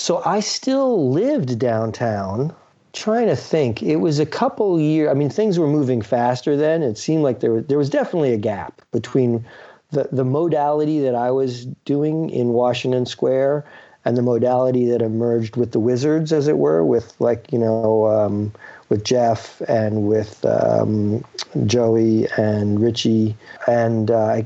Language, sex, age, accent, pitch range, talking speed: English, male, 40-59, American, 110-140 Hz, 160 wpm